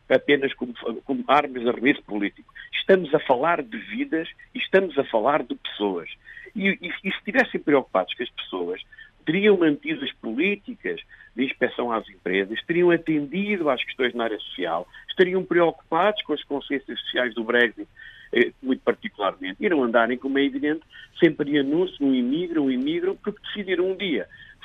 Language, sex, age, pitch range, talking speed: Portuguese, male, 50-69, 130-205 Hz, 170 wpm